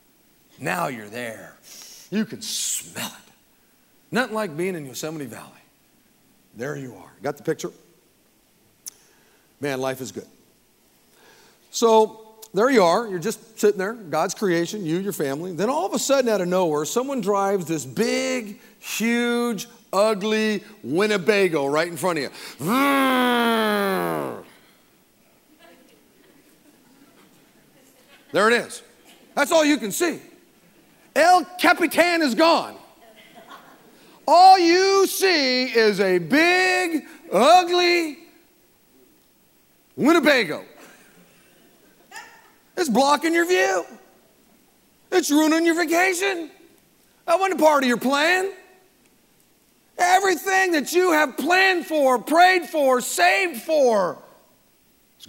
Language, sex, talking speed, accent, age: English, male, 110 wpm, American, 50-69